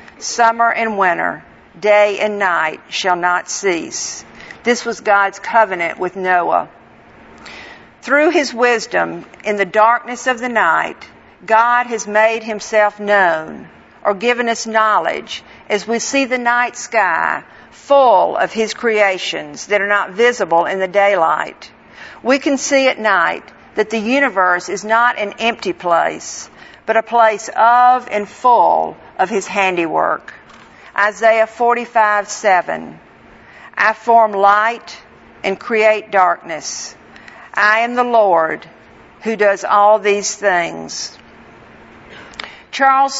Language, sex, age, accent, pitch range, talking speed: English, female, 50-69, American, 200-240 Hz, 125 wpm